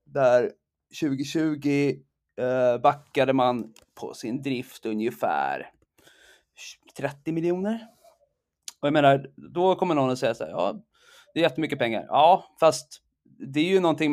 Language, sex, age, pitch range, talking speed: Swedish, male, 20-39, 125-155 Hz, 130 wpm